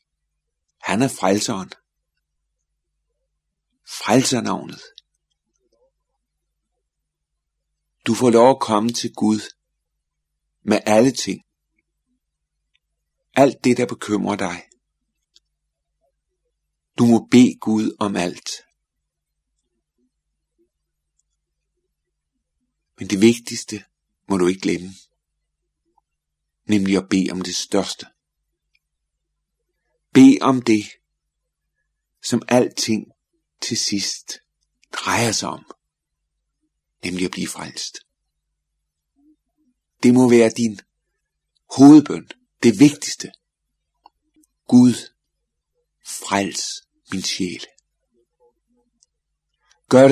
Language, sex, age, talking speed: Danish, male, 50-69, 75 wpm